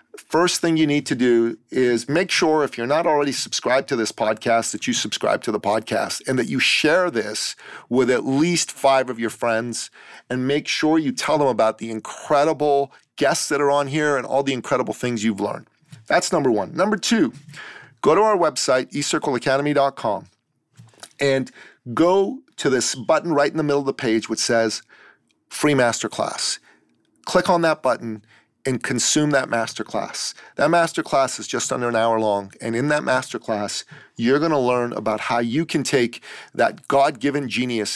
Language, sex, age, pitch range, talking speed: English, male, 40-59, 115-150 Hz, 180 wpm